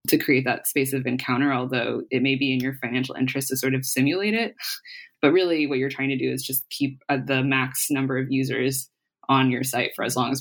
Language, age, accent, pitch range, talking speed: English, 20-39, American, 130-150 Hz, 235 wpm